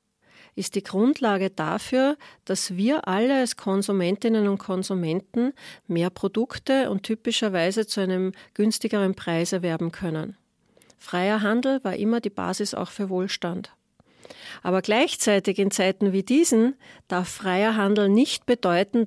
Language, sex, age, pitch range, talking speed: German, female, 40-59, 185-225 Hz, 130 wpm